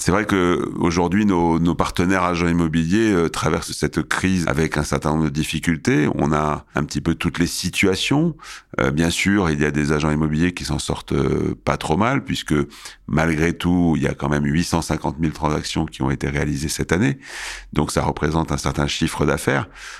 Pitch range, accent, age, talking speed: 75-85 Hz, French, 40-59, 200 wpm